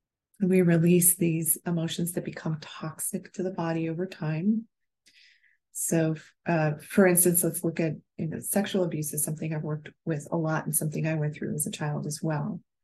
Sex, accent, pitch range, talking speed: female, American, 155-180 Hz, 185 wpm